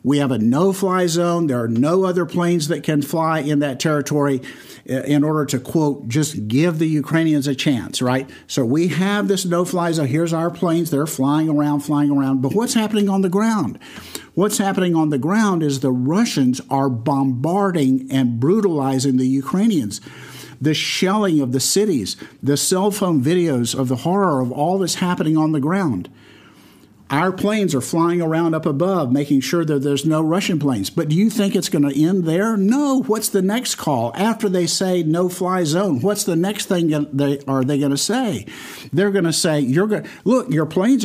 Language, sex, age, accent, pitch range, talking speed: English, male, 50-69, American, 140-185 Hz, 205 wpm